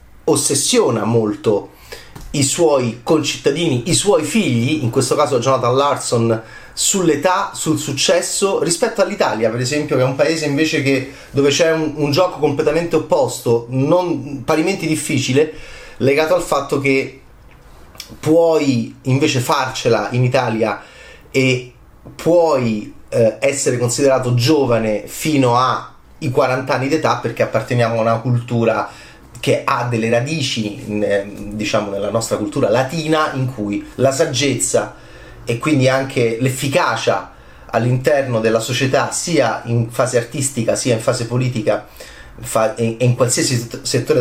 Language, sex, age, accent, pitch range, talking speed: Italian, male, 30-49, native, 115-150 Hz, 125 wpm